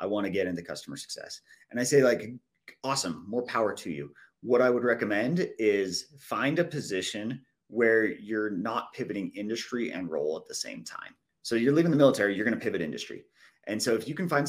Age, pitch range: 30-49, 110-140 Hz